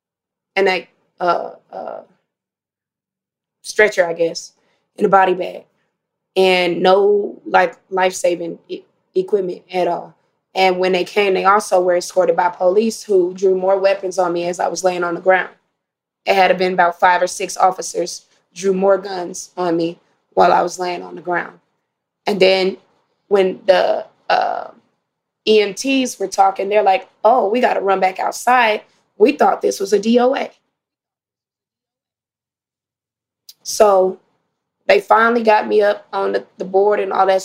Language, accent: English, American